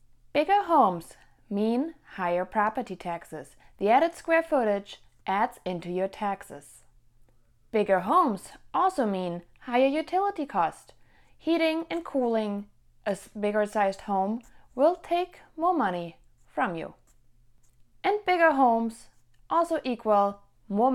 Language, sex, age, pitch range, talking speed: English, female, 30-49, 180-270 Hz, 115 wpm